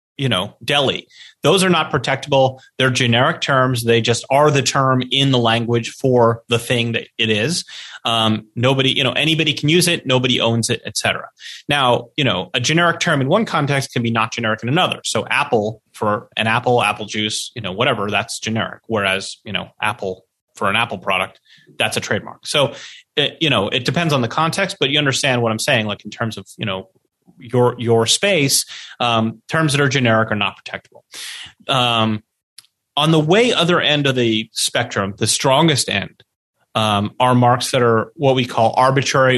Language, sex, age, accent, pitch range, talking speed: English, male, 30-49, American, 115-145 Hz, 195 wpm